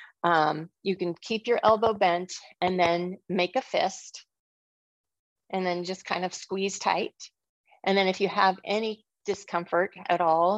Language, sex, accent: English, female, American